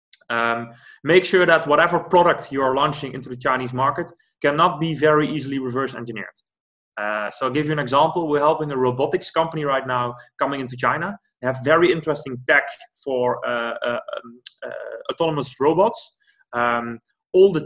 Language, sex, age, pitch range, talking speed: English, male, 20-39, 125-160 Hz, 170 wpm